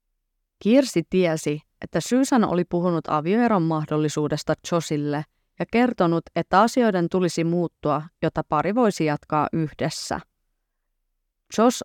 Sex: female